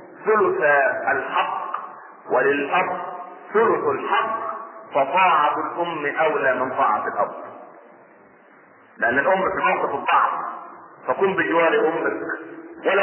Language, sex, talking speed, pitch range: Arabic, male, 90 wpm, 180-255 Hz